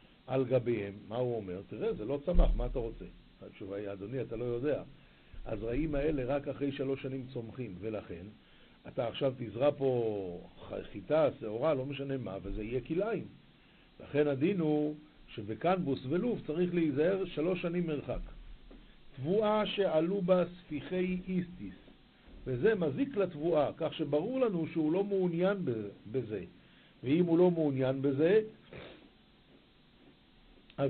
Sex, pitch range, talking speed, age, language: male, 130-185 Hz, 135 wpm, 60-79, Hebrew